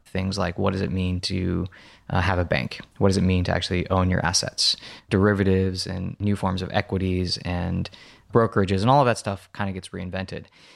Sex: male